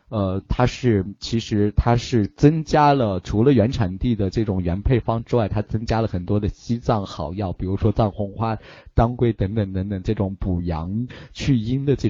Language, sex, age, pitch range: Chinese, male, 20-39, 100-120 Hz